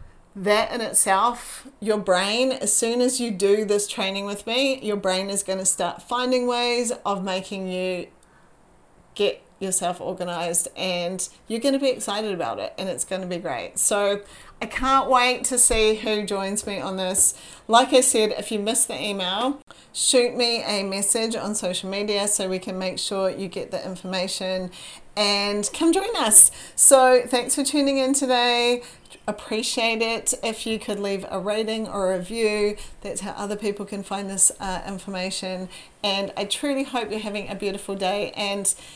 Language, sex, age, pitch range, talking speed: English, female, 40-59, 195-240 Hz, 180 wpm